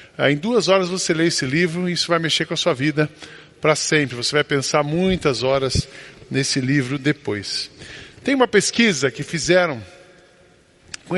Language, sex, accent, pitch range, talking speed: English, male, Brazilian, 155-190 Hz, 165 wpm